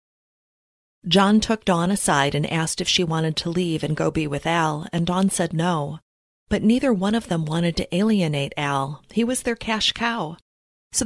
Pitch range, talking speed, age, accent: 150-185 Hz, 190 wpm, 30-49, American